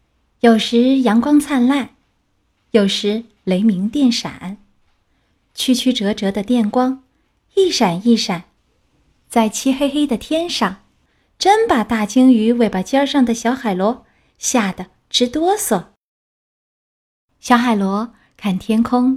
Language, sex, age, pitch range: Chinese, female, 30-49, 215-280 Hz